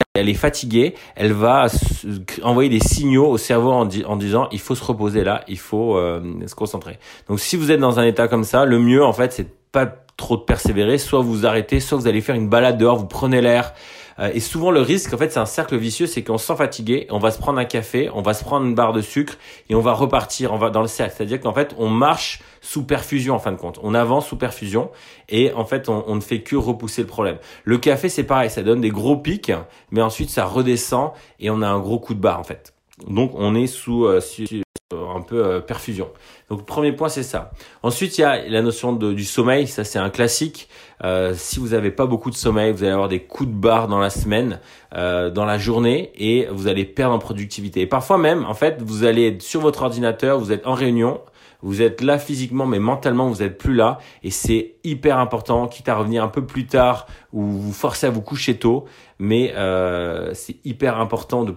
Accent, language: French, French